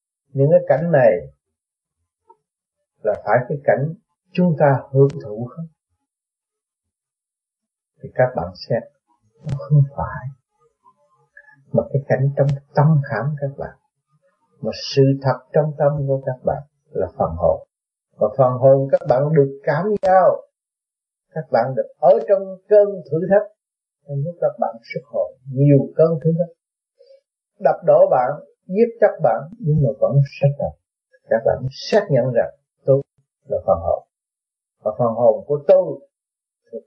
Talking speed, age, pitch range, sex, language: 145 wpm, 30-49, 135-185 Hz, male, Vietnamese